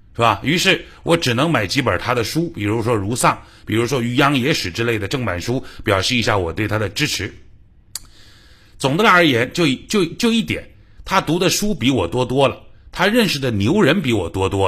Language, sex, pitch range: Chinese, male, 100-165 Hz